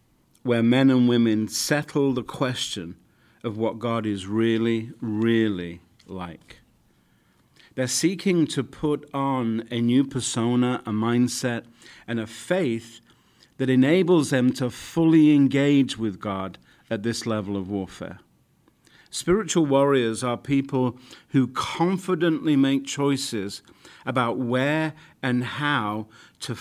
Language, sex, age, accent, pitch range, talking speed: English, male, 50-69, British, 115-150 Hz, 120 wpm